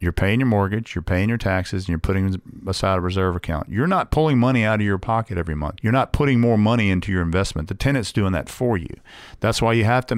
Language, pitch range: English, 95-120 Hz